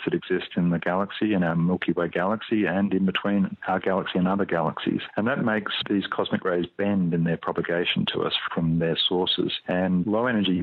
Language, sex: English, male